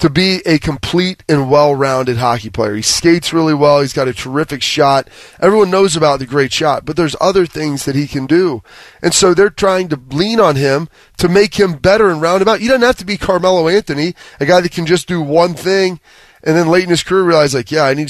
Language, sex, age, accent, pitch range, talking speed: English, male, 30-49, American, 145-185 Hz, 240 wpm